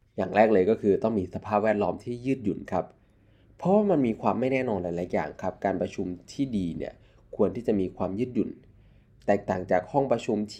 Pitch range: 95-125 Hz